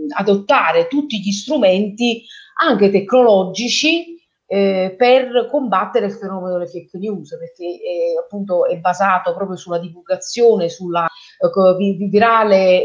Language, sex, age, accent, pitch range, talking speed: Italian, female, 30-49, native, 180-230 Hz, 110 wpm